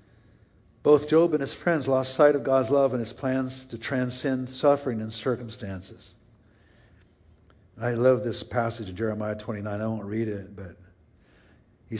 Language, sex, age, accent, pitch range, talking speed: English, male, 50-69, American, 100-125 Hz, 155 wpm